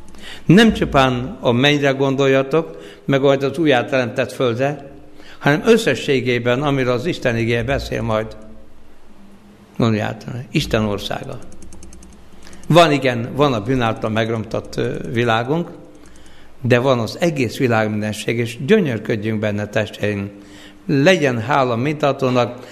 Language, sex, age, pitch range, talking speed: Hungarian, male, 60-79, 120-150 Hz, 110 wpm